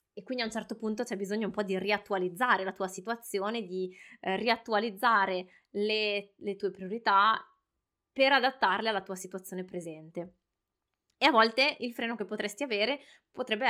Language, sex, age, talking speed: Italian, female, 20-39, 160 wpm